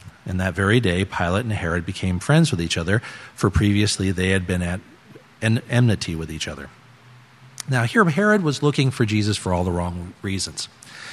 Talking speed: 185 wpm